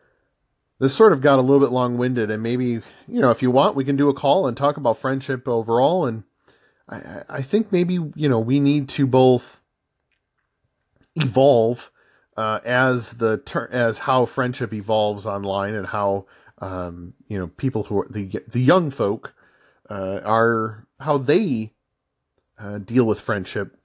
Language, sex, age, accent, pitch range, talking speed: English, male, 40-59, American, 110-145 Hz, 170 wpm